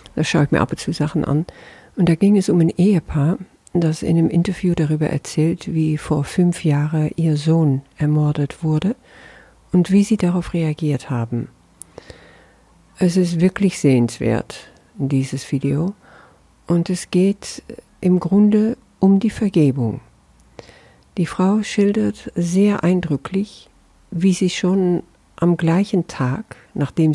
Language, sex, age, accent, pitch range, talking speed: German, female, 50-69, German, 150-185 Hz, 135 wpm